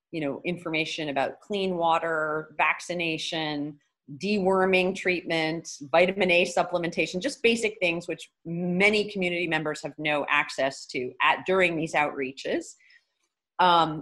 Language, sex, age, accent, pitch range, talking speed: English, female, 30-49, American, 145-180 Hz, 120 wpm